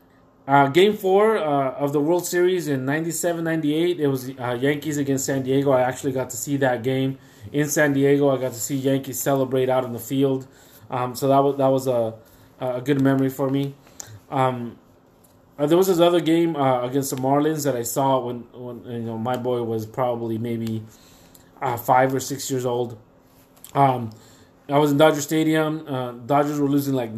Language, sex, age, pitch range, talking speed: English, male, 20-39, 125-145 Hz, 195 wpm